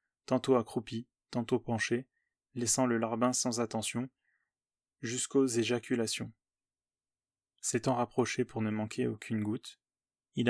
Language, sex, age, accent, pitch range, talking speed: French, male, 20-39, French, 115-130 Hz, 110 wpm